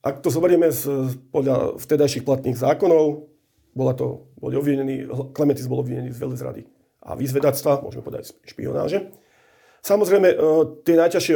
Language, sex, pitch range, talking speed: Slovak, male, 130-155 Hz, 135 wpm